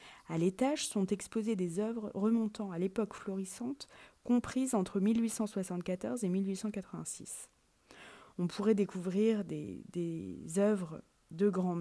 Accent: French